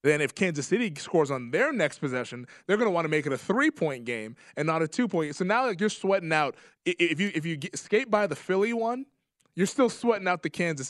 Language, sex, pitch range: English, male, 120-160 Hz